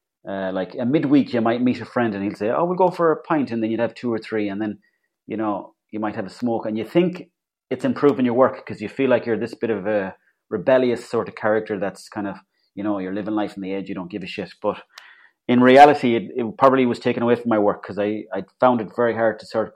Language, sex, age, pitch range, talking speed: English, male, 30-49, 105-130 Hz, 280 wpm